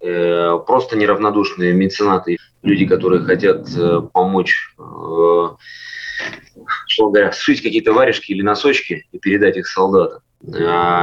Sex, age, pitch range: male, 20-39, 90-130 Hz